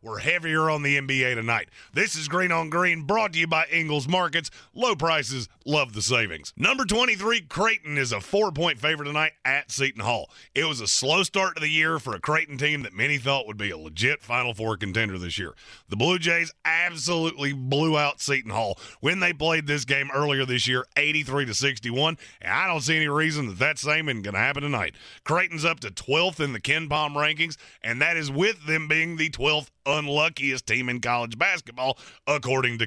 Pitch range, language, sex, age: 130-160 Hz, English, male, 30-49